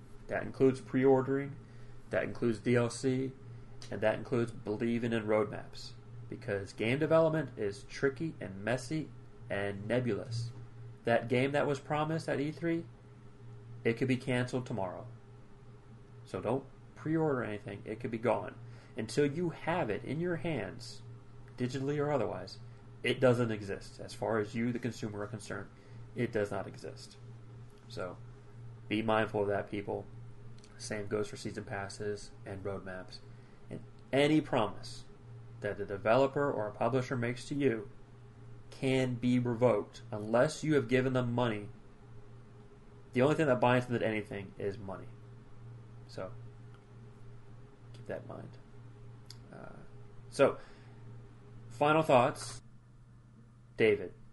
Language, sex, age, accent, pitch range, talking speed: English, male, 30-49, American, 110-130 Hz, 135 wpm